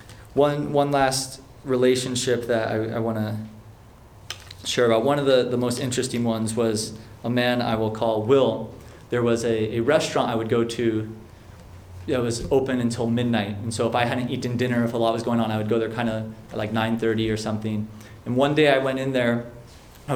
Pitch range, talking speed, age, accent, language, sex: 115-135 Hz, 210 wpm, 20-39, American, English, male